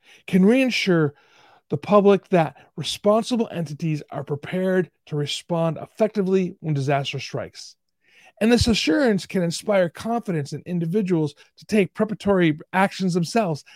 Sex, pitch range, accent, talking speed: male, 155-205 Hz, American, 120 wpm